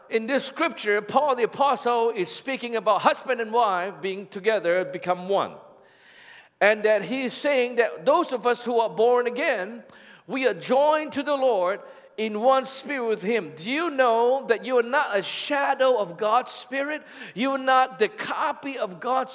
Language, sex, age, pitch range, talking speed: English, male, 50-69, 215-275 Hz, 185 wpm